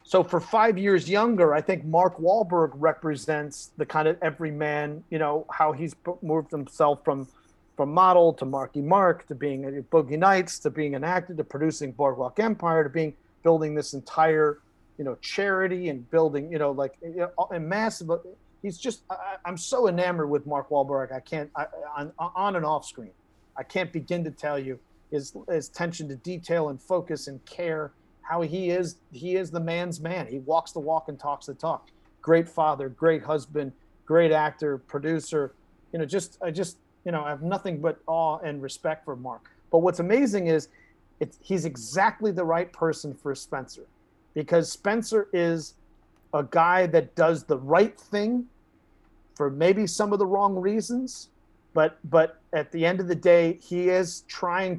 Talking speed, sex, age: 180 wpm, male, 40-59